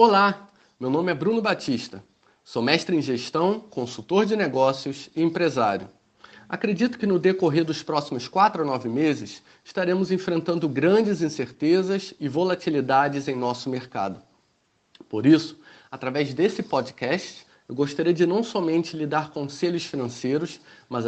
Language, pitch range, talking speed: Portuguese, 130-185 Hz, 140 wpm